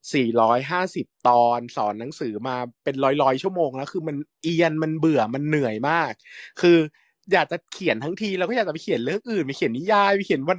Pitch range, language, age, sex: 125-175 Hz, Thai, 20-39, male